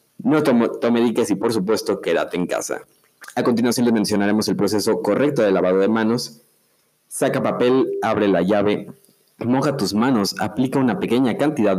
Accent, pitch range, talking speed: Mexican, 100-125 Hz, 165 wpm